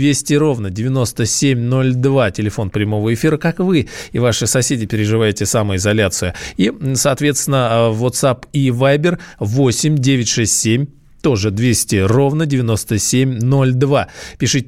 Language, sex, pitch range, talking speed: Russian, male, 120-155 Hz, 100 wpm